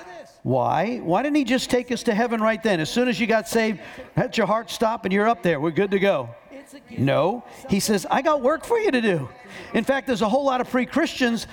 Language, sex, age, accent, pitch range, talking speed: English, male, 50-69, American, 200-265 Hz, 250 wpm